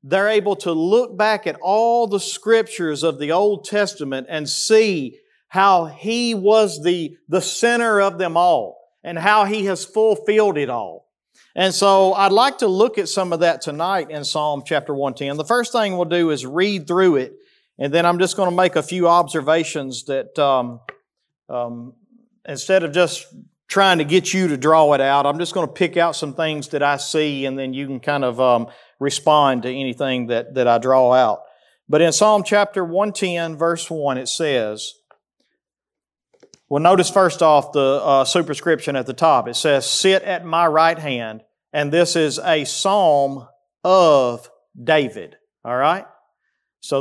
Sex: male